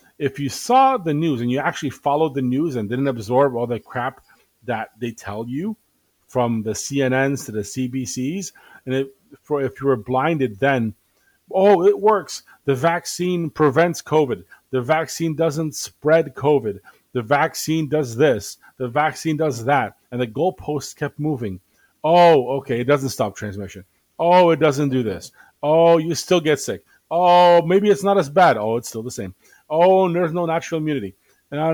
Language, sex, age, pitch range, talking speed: English, male, 30-49, 110-155 Hz, 175 wpm